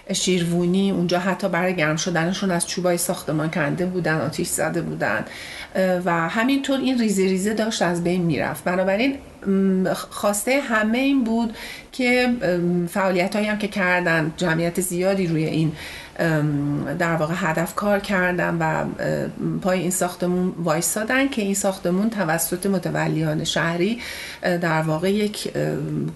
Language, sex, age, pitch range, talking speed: Persian, female, 40-59, 170-205 Hz, 125 wpm